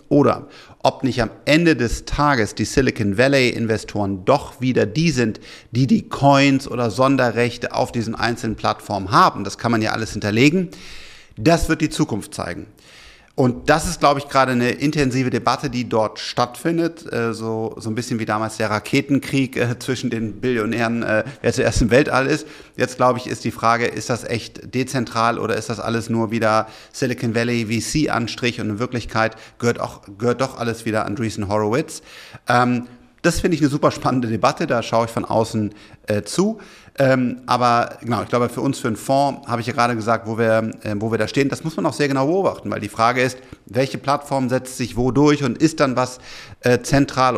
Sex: male